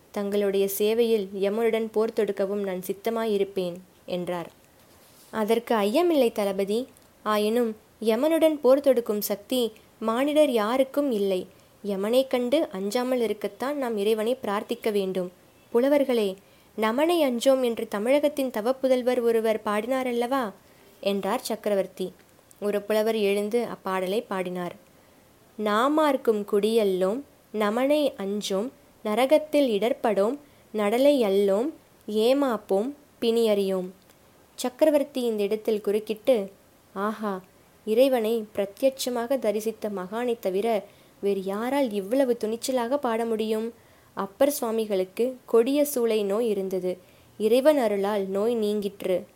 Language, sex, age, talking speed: Tamil, female, 20-39, 95 wpm